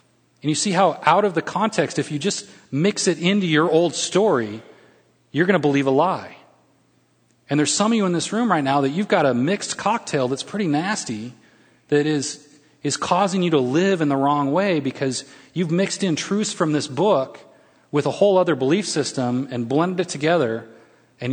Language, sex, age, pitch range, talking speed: English, male, 30-49, 130-180 Hz, 205 wpm